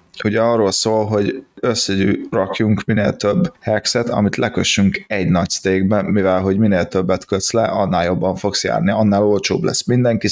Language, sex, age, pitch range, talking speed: Hungarian, male, 20-39, 95-110 Hz, 155 wpm